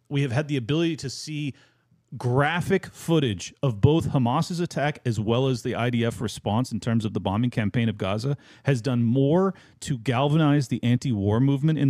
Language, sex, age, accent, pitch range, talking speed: English, male, 40-59, American, 115-145 Hz, 180 wpm